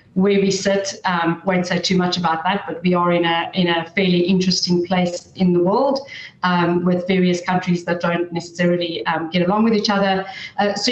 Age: 40-59